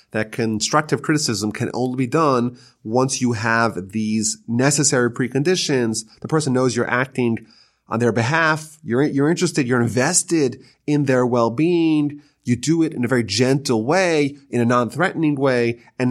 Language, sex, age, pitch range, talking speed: English, male, 30-49, 110-145 Hz, 155 wpm